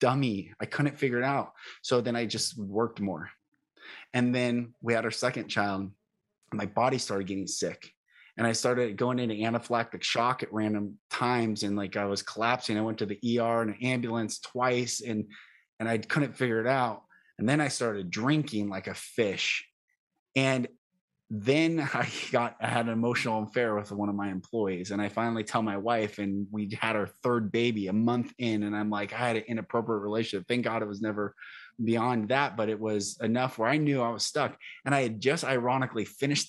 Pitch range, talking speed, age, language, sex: 105-125 Hz, 200 wpm, 20-39, English, male